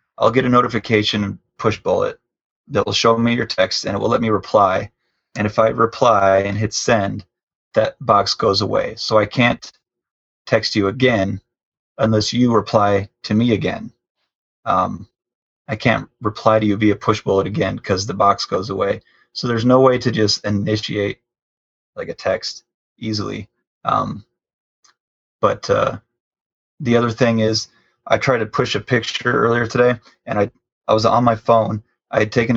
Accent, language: American, English